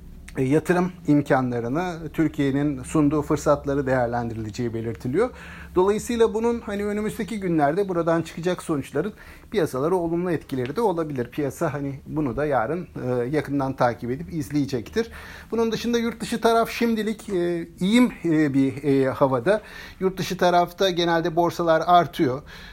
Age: 50-69